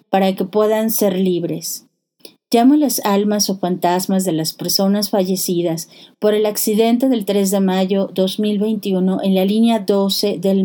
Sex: female